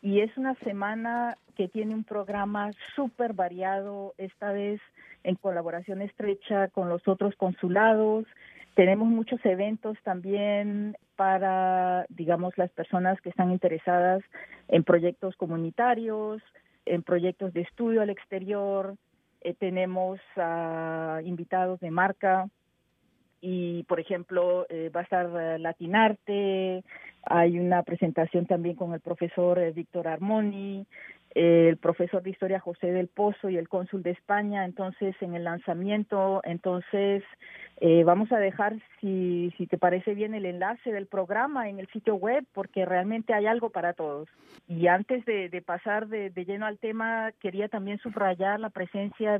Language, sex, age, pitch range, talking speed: Spanish, female, 40-59, 180-210 Hz, 145 wpm